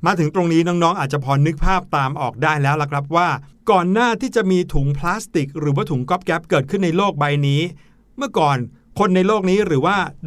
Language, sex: Thai, male